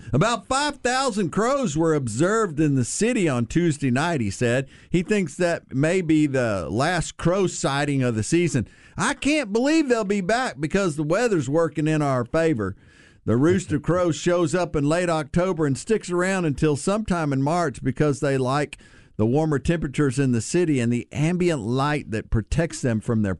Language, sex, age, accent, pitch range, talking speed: English, male, 50-69, American, 115-165 Hz, 180 wpm